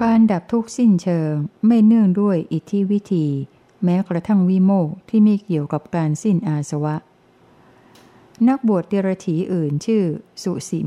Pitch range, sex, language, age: 160-195 Hz, female, Thai, 60-79